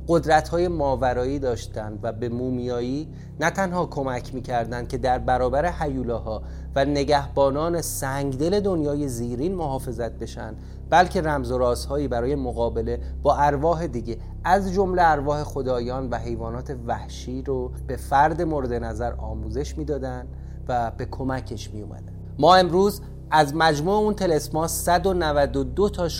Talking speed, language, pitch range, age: 130 wpm, Persian, 115-160 Hz, 30-49